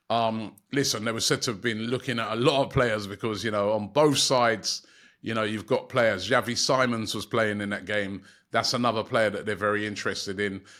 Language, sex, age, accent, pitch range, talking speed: English, male, 30-49, British, 110-135 Hz, 220 wpm